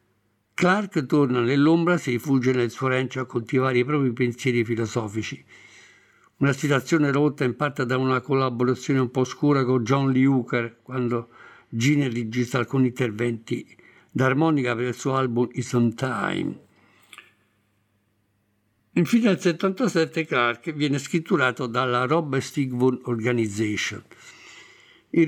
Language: Italian